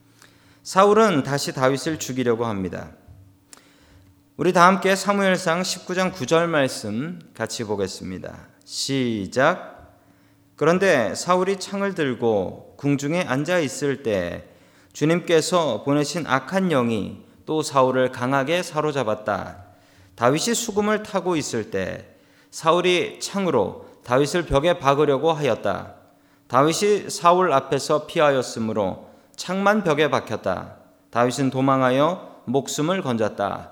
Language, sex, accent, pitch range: Korean, male, native, 125-180 Hz